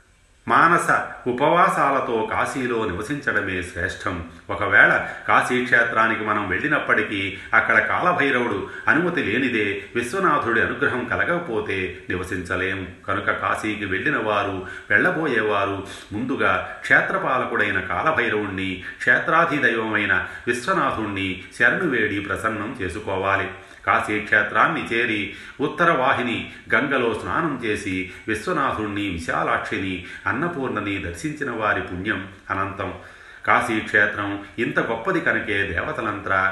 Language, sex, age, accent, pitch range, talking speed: Telugu, male, 30-49, native, 95-110 Hz, 85 wpm